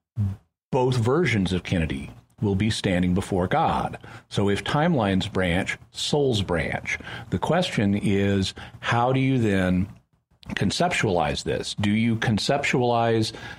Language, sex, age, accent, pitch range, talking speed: English, male, 40-59, American, 100-120 Hz, 120 wpm